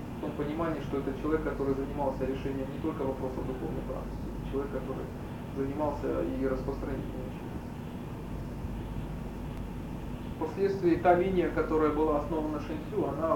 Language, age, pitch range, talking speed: Russian, 20-39, 135-155 Hz, 125 wpm